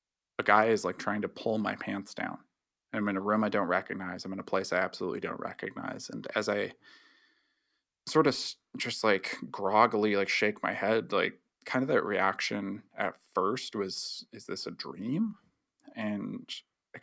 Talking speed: 180 wpm